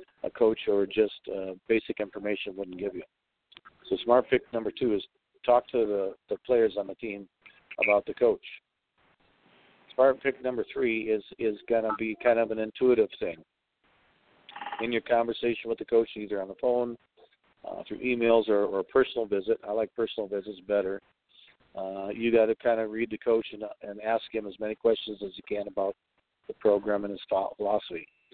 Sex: male